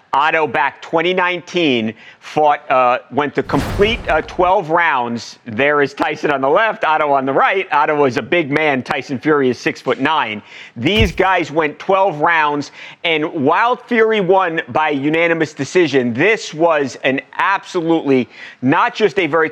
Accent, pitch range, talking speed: American, 145-185 Hz, 160 wpm